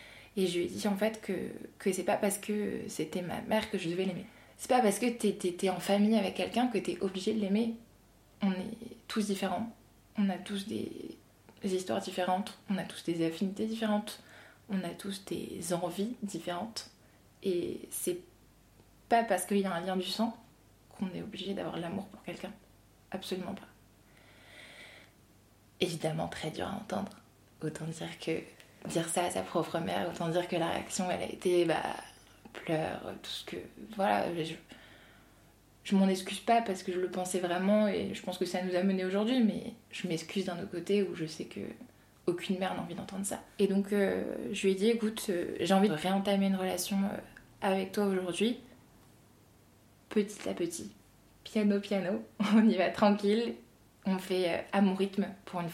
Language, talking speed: French, 190 wpm